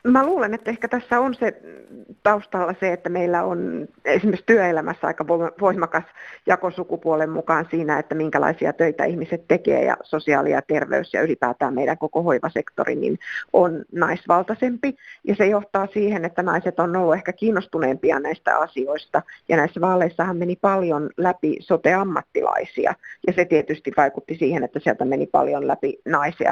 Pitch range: 155-200 Hz